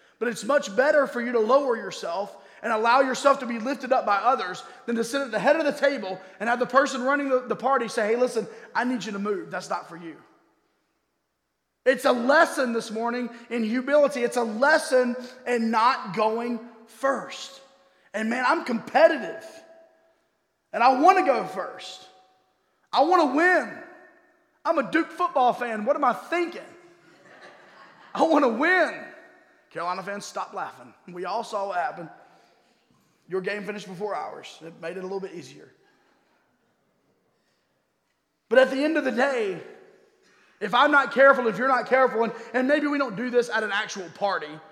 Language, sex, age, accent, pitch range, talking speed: English, male, 30-49, American, 225-290 Hz, 180 wpm